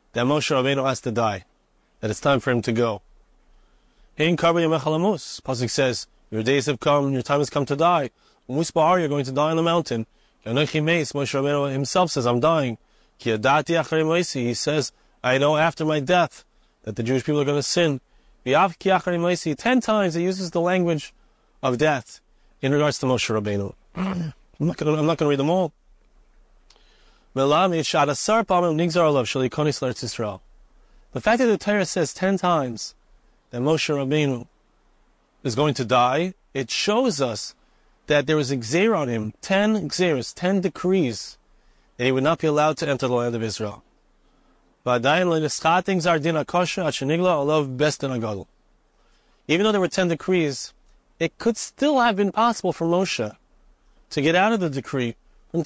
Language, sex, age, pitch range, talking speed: English, male, 30-49, 130-175 Hz, 145 wpm